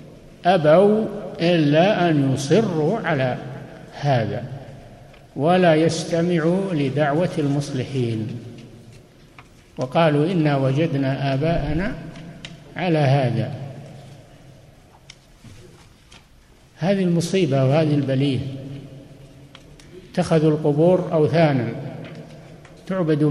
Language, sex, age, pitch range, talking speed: Arabic, male, 60-79, 140-165 Hz, 60 wpm